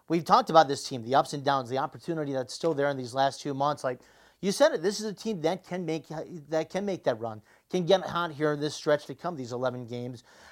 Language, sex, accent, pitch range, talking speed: English, male, American, 140-185 Hz, 270 wpm